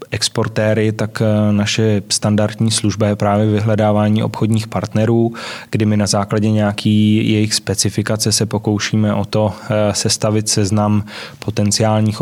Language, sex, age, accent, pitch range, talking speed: Czech, male, 20-39, native, 105-110 Hz, 120 wpm